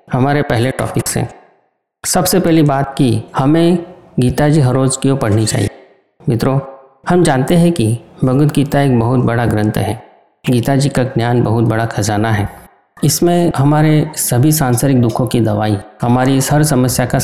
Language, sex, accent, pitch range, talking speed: Hindi, male, native, 115-150 Hz, 165 wpm